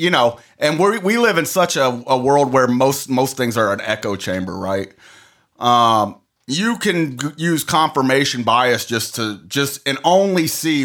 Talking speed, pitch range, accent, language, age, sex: 185 wpm, 115-150 Hz, American, English, 30-49, male